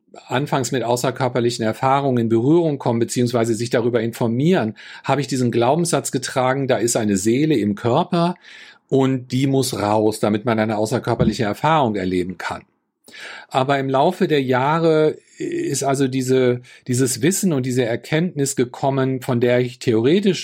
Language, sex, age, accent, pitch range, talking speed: German, male, 50-69, German, 120-140 Hz, 145 wpm